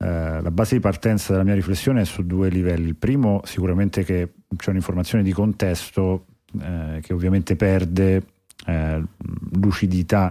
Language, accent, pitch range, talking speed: Italian, native, 90-100 Hz, 145 wpm